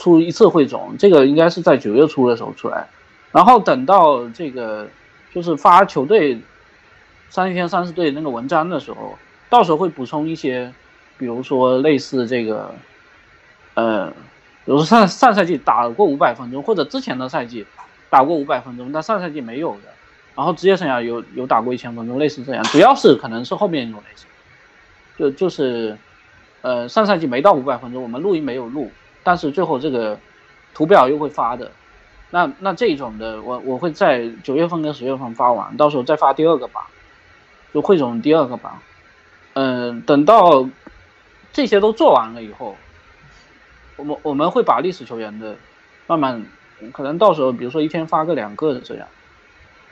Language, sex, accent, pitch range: Chinese, male, native, 120-175 Hz